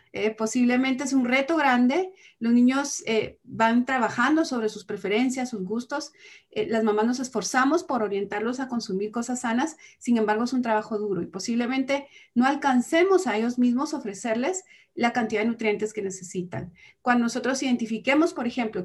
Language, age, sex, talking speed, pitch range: Spanish, 40-59, female, 165 wpm, 215-255 Hz